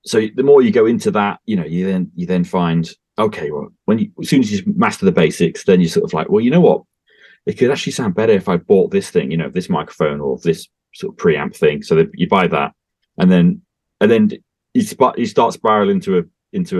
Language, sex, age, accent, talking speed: English, male, 30-49, British, 245 wpm